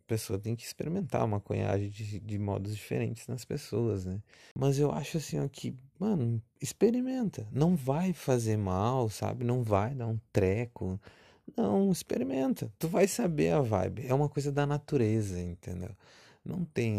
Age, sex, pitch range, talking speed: 20-39, male, 95-130 Hz, 165 wpm